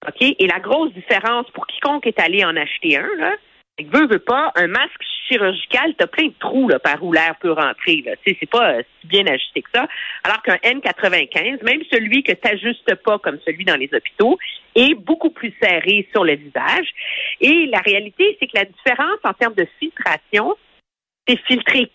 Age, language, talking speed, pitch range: 50-69, French, 195 wpm, 200-285 Hz